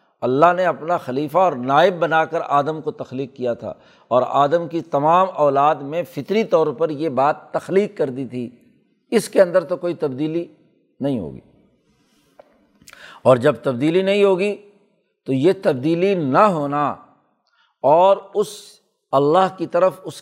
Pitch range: 140-185 Hz